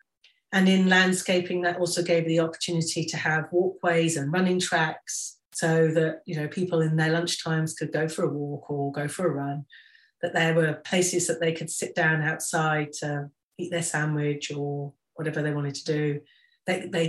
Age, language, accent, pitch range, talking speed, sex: 40-59, English, British, 150-175 Hz, 190 wpm, female